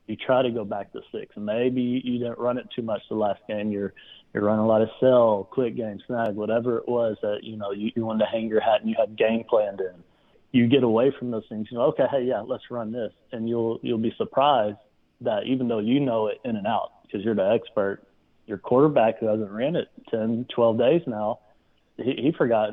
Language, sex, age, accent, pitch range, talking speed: English, male, 30-49, American, 105-125 Hz, 240 wpm